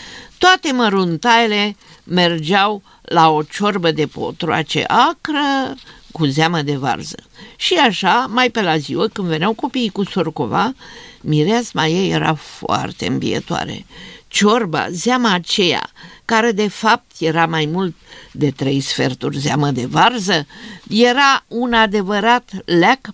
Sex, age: female, 50-69